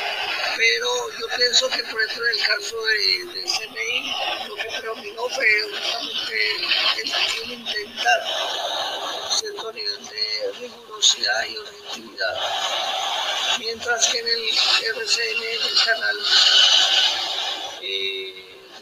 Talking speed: 125 wpm